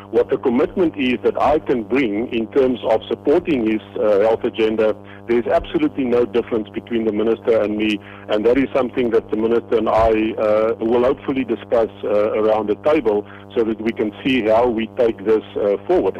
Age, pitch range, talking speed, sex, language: 50-69, 105-150 Hz, 195 wpm, male, English